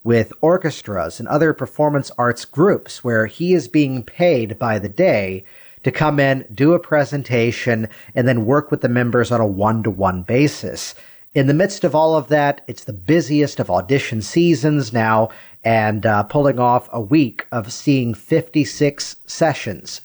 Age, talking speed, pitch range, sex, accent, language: 40-59, 165 wpm, 115-150 Hz, male, American, English